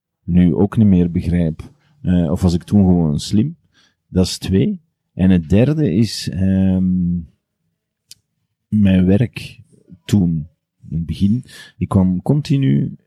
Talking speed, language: 130 wpm, Dutch